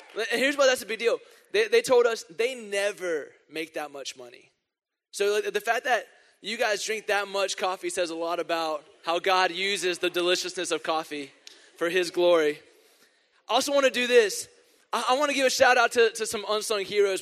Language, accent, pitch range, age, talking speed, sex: English, American, 160-270 Hz, 20-39, 200 wpm, male